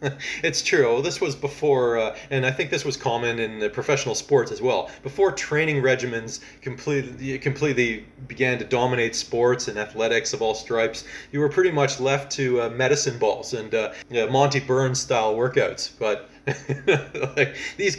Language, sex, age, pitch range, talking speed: English, male, 30-49, 125-145 Hz, 155 wpm